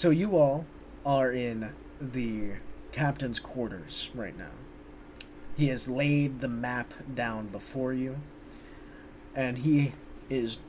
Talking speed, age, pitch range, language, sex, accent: 120 wpm, 30-49, 110-155 Hz, English, male, American